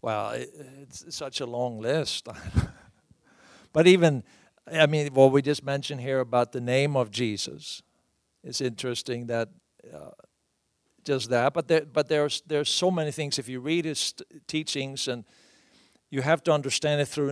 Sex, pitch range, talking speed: male, 125-155 Hz, 160 wpm